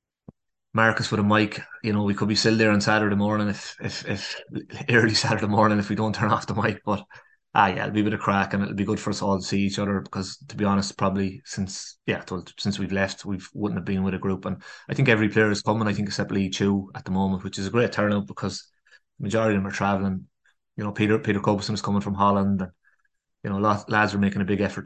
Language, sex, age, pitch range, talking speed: English, male, 20-39, 95-105 Hz, 265 wpm